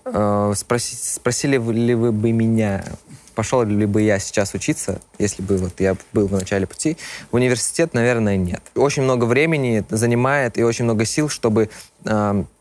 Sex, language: male, Russian